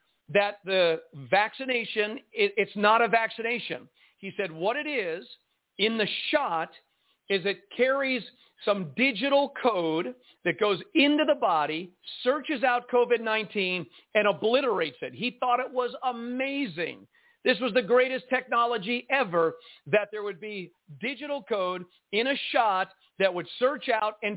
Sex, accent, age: male, American, 50-69